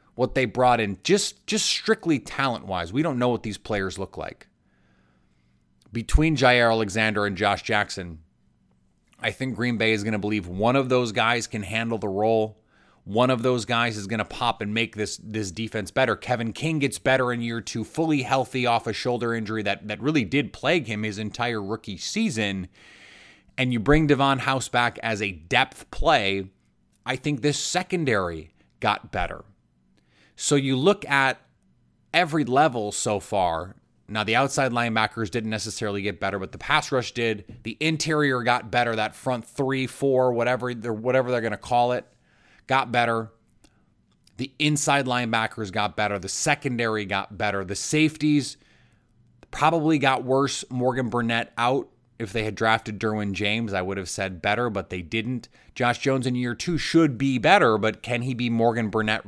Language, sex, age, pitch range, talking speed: English, male, 30-49, 105-130 Hz, 175 wpm